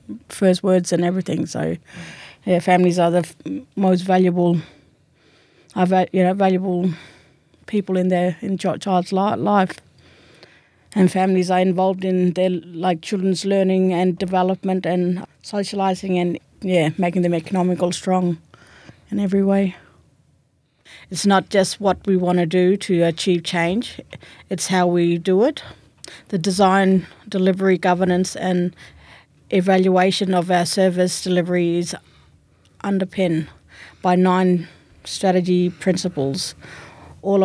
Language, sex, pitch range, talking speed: English, female, 175-195 Hz, 125 wpm